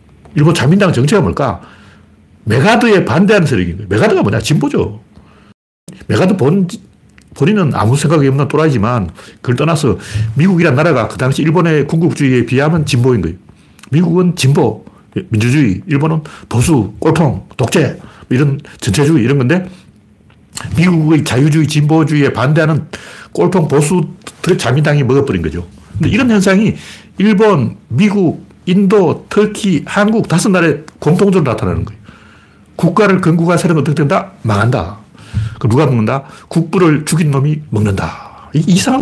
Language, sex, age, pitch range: Korean, male, 60-79, 110-175 Hz